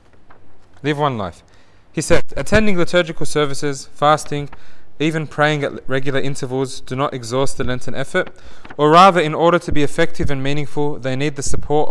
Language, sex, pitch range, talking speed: English, male, 120-160 Hz, 165 wpm